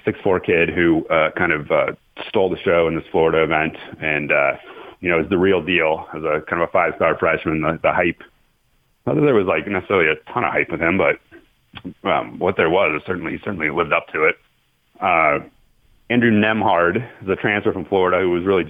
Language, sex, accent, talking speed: English, male, American, 220 wpm